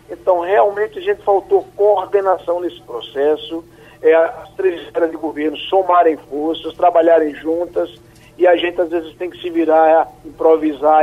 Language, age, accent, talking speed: Portuguese, 50-69, Brazilian, 160 wpm